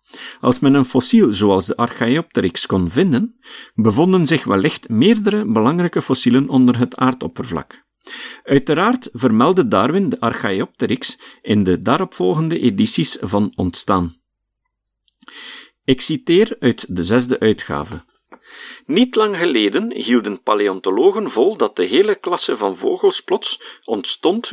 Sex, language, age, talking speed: male, Dutch, 50-69, 120 wpm